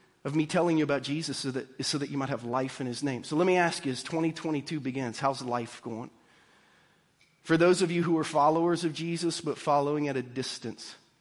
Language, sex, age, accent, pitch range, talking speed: English, male, 40-59, American, 135-165 Hz, 220 wpm